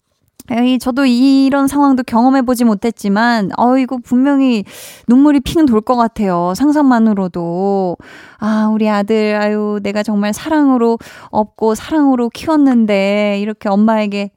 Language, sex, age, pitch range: Korean, female, 20-39, 205-270 Hz